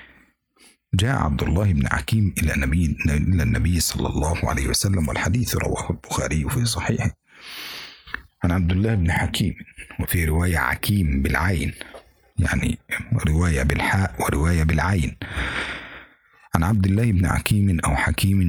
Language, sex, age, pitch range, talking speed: Indonesian, male, 50-69, 80-105 Hz, 120 wpm